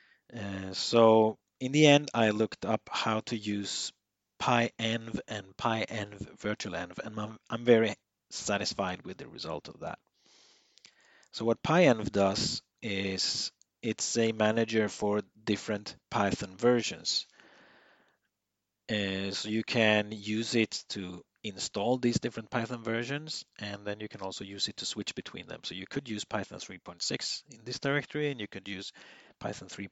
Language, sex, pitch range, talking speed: English, male, 100-115 Hz, 150 wpm